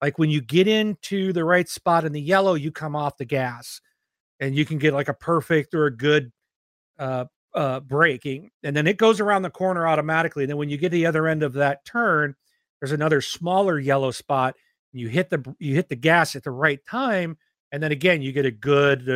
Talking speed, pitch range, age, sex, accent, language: 220 wpm, 135-170 Hz, 40-59, male, American, English